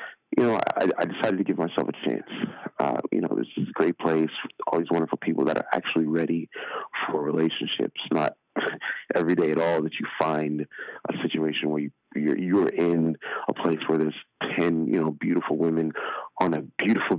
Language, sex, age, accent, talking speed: English, male, 30-49, American, 195 wpm